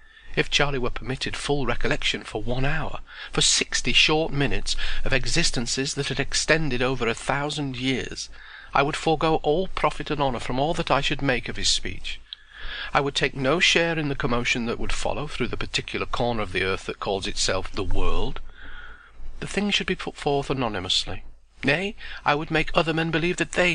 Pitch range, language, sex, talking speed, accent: 125-160 Hz, English, male, 195 wpm, British